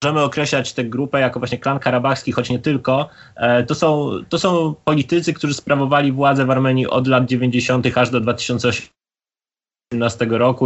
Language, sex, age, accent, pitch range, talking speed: Polish, male, 20-39, native, 95-125 Hz, 150 wpm